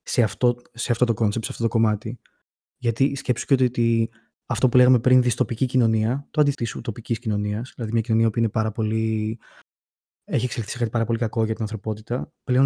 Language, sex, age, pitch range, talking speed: Greek, male, 20-39, 110-130 Hz, 205 wpm